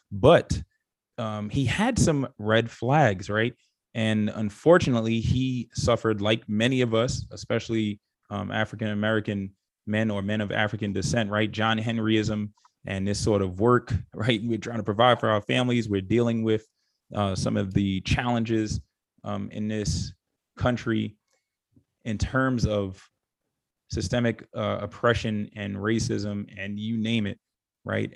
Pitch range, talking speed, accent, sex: 100-115 Hz, 145 wpm, American, male